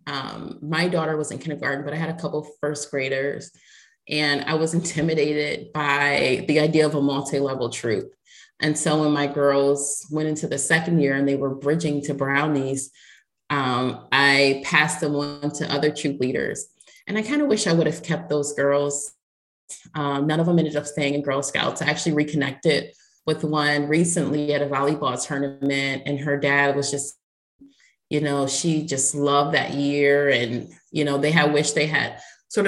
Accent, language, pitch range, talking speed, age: American, English, 140-165 Hz, 185 wpm, 30-49